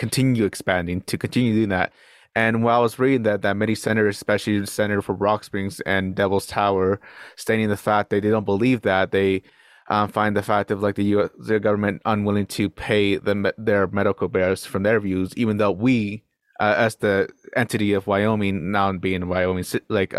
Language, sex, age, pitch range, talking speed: English, male, 20-39, 95-110 Hz, 200 wpm